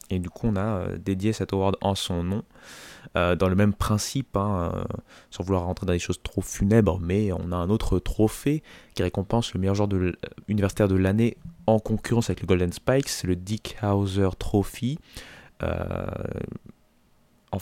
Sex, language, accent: male, French, French